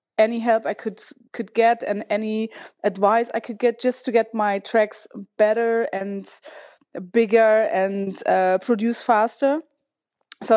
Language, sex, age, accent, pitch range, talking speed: English, female, 20-39, German, 205-240 Hz, 140 wpm